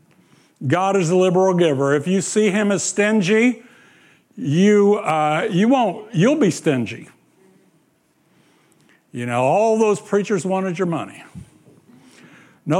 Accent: American